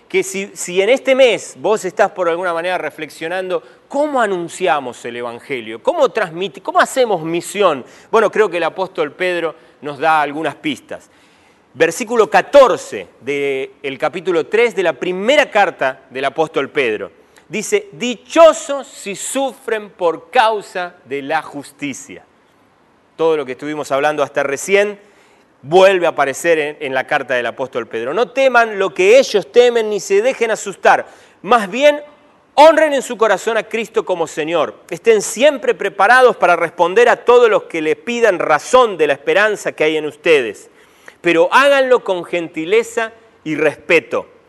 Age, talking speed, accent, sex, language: 30-49, 150 wpm, Argentinian, male, Spanish